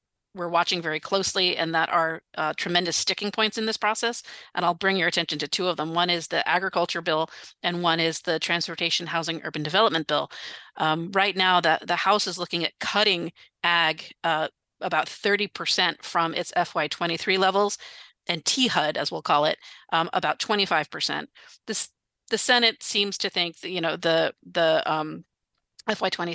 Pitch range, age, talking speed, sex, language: 160-185 Hz, 40-59, 175 wpm, female, English